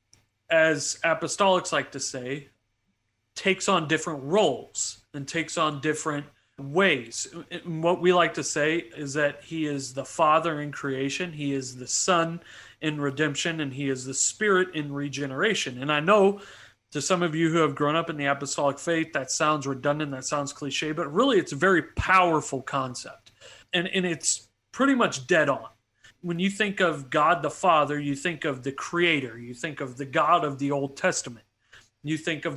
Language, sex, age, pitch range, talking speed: English, male, 40-59, 140-175 Hz, 180 wpm